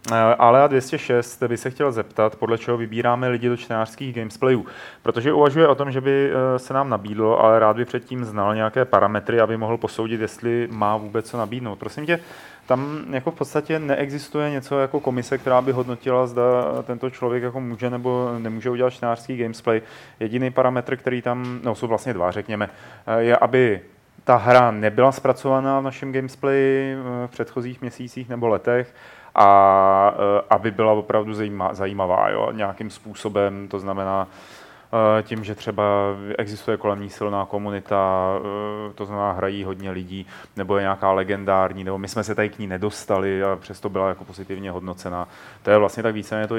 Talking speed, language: 170 wpm, Czech